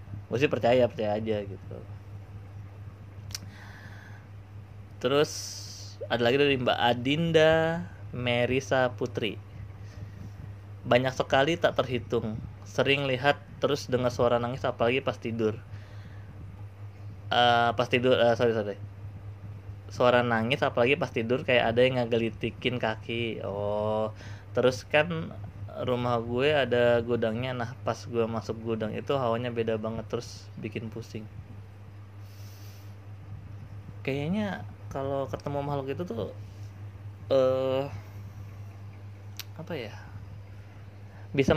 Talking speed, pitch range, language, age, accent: 100 wpm, 100-125 Hz, Indonesian, 20-39, native